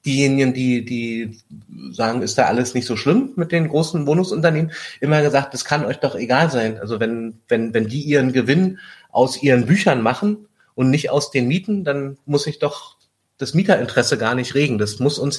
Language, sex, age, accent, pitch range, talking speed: German, male, 30-49, German, 125-155 Hz, 195 wpm